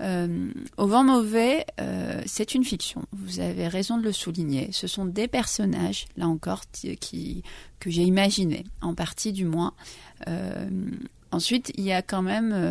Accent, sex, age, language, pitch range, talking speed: French, female, 40-59, French, 170-210 Hz, 170 wpm